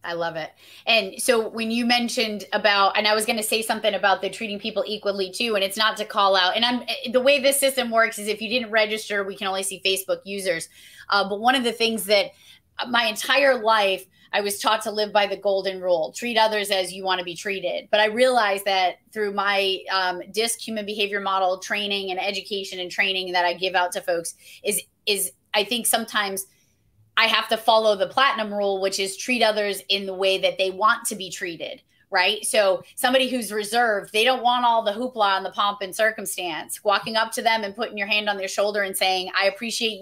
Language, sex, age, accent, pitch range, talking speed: English, female, 20-39, American, 190-225 Hz, 225 wpm